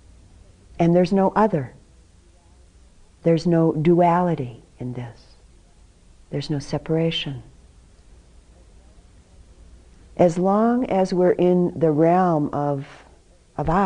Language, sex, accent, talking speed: English, female, American, 90 wpm